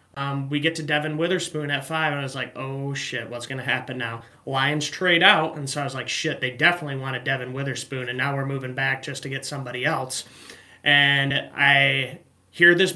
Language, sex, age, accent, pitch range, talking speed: English, male, 30-49, American, 135-155 Hz, 215 wpm